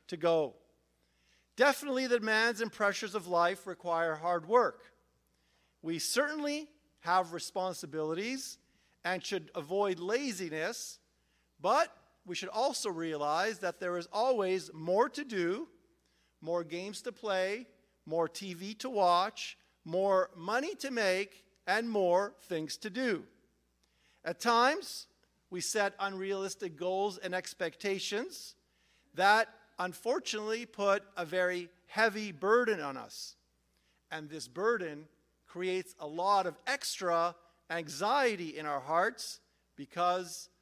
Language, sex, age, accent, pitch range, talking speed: English, male, 50-69, American, 165-215 Hz, 115 wpm